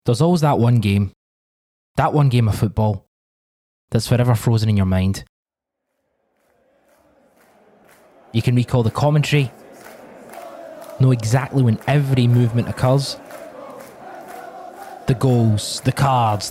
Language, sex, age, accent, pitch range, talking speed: English, male, 20-39, British, 115-150 Hz, 115 wpm